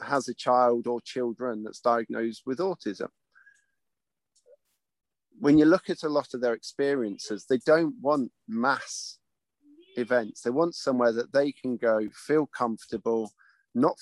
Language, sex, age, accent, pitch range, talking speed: English, male, 40-59, British, 110-135 Hz, 140 wpm